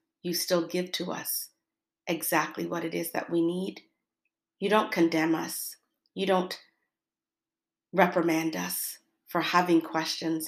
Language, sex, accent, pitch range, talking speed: English, female, American, 165-190 Hz, 130 wpm